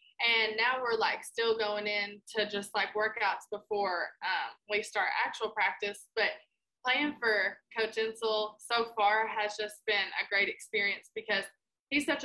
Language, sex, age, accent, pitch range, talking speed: English, female, 20-39, American, 200-225 Hz, 160 wpm